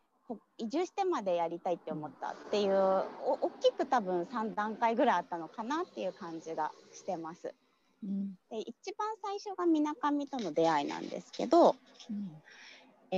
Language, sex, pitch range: Japanese, female, 185-290 Hz